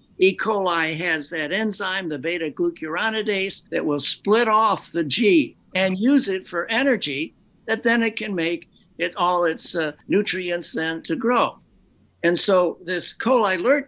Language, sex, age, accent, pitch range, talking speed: English, male, 60-79, American, 170-215 Hz, 145 wpm